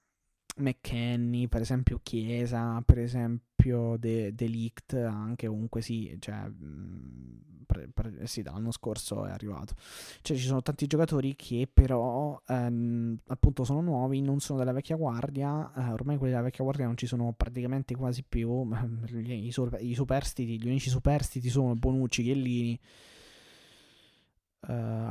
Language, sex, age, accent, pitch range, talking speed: Italian, male, 20-39, native, 115-135 Hz, 145 wpm